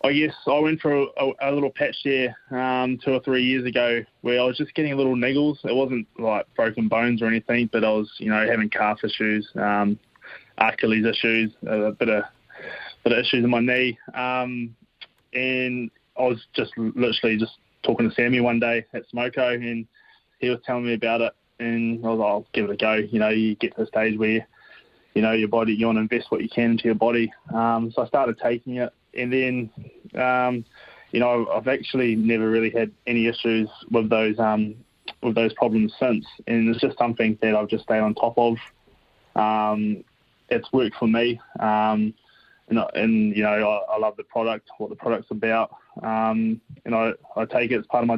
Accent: Australian